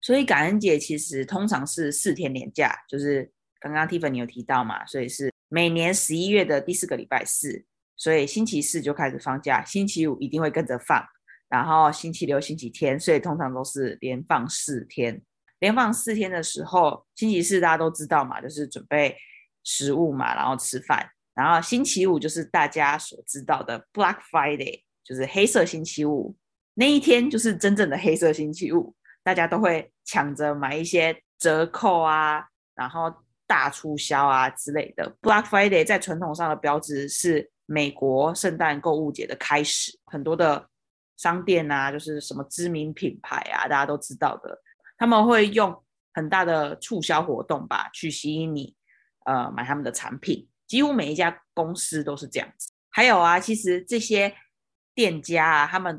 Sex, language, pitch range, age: female, Chinese, 145-185 Hz, 20-39